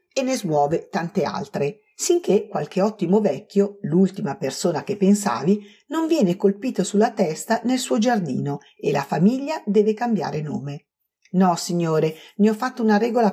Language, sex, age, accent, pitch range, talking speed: Italian, female, 50-69, native, 155-240 Hz, 155 wpm